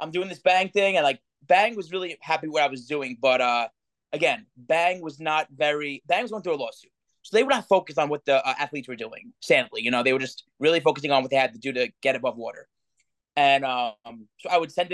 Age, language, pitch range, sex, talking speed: 20-39, English, 135-175 Hz, male, 260 wpm